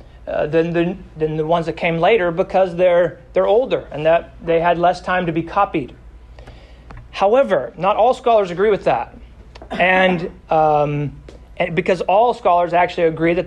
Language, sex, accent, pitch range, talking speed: English, male, American, 155-190 Hz, 170 wpm